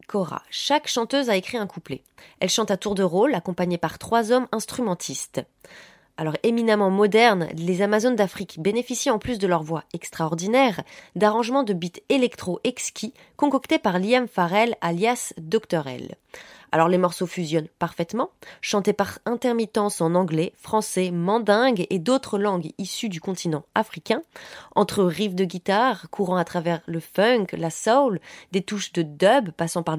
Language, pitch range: French, 175-225 Hz